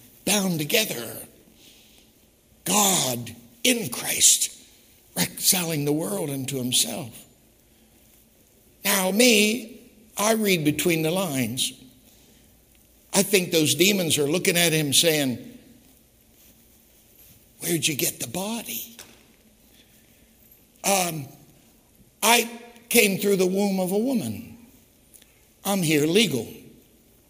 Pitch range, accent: 125-200 Hz, American